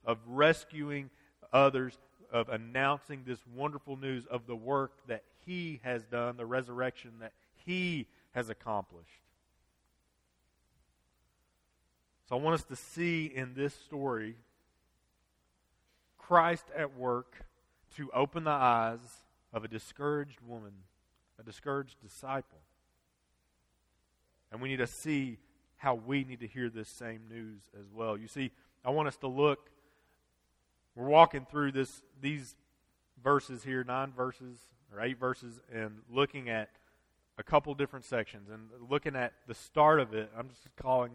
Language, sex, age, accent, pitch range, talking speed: English, male, 40-59, American, 85-135 Hz, 140 wpm